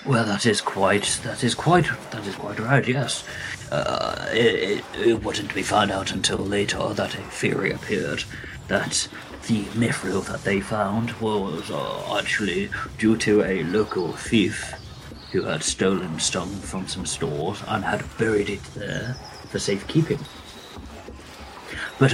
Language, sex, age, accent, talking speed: English, male, 40-59, British, 150 wpm